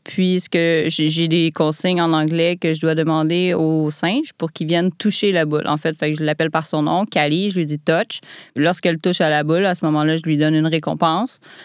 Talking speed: 230 wpm